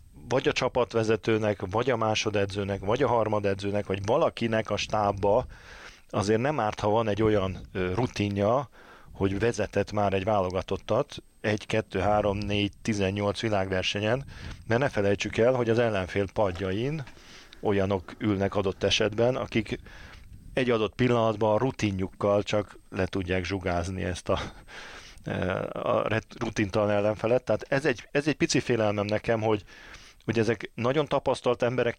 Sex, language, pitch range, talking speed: male, Hungarian, 100-120 Hz, 140 wpm